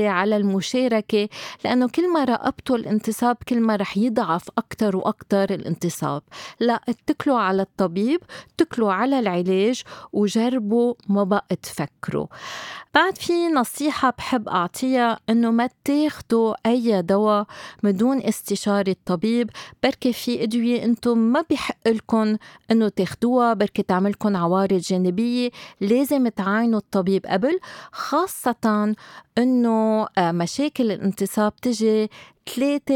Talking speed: 105 wpm